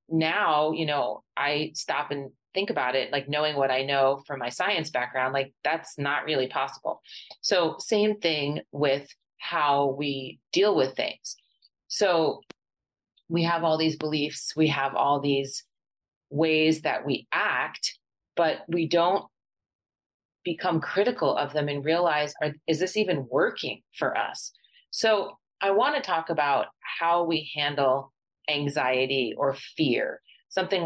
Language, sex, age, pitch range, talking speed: English, female, 30-49, 135-160 Hz, 145 wpm